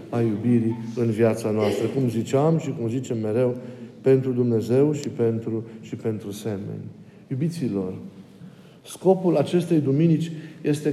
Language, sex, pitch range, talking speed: Romanian, male, 130-170 Hz, 125 wpm